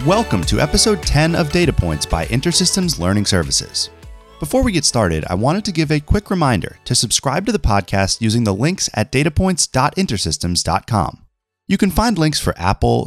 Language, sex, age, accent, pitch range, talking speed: English, male, 30-49, American, 90-150 Hz, 175 wpm